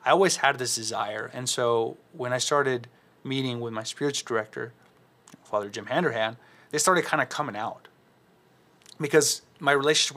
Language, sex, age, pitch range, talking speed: English, male, 30-49, 115-135 Hz, 160 wpm